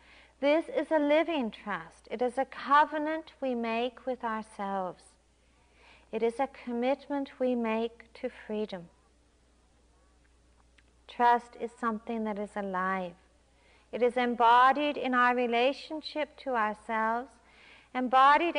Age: 50-69